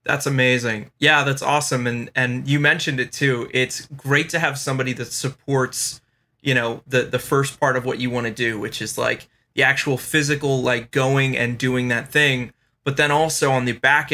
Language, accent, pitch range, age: English, American, 125-140 Hz, 20-39